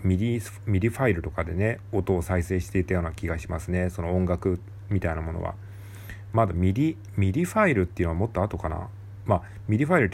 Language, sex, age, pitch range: Japanese, male, 40-59, 90-100 Hz